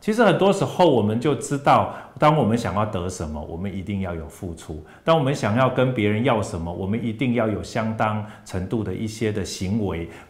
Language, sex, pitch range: Chinese, male, 95-130 Hz